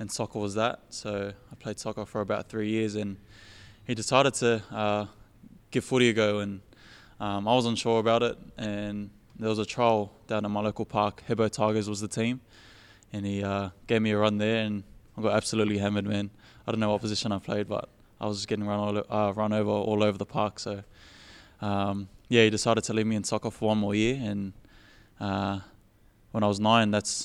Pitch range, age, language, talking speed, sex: 100-110 Hz, 20-39, English, 220 wpm, male